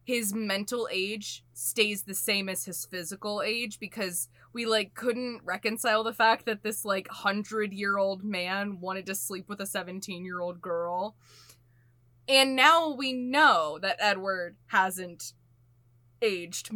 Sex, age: female, 20-39